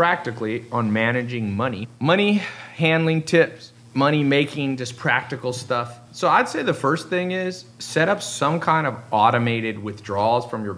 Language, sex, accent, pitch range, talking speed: English, male, American, 110-135 Hz, 155 wpm